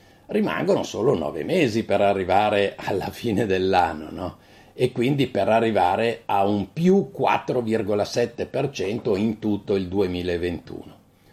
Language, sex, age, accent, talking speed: Italian, male, 60-79, native, 110 wpm